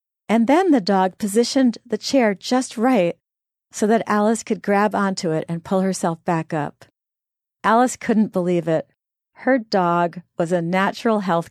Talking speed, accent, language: 160 wpm, American, English